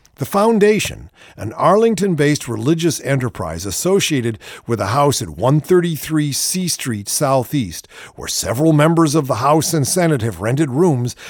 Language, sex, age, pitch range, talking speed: English, male, 50-69, 115-185 Hz, 140 wpm